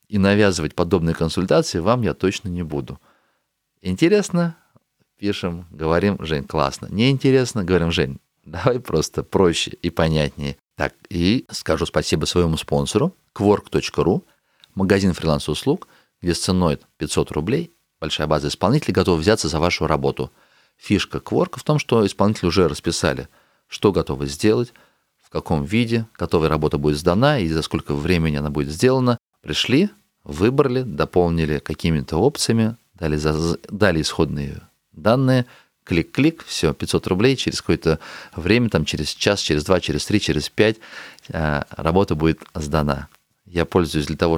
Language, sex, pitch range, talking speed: Russian, male, 80-105 Hz, 135 wpm